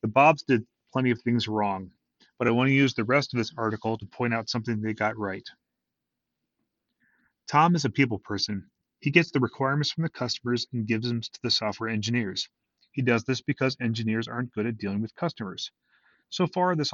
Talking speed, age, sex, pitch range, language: 200 wpm, 30-49, male, 110-140 Hz, English